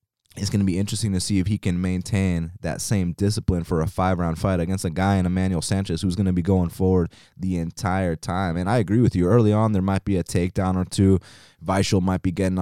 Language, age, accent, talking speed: English, 20-39, American, 240 wpm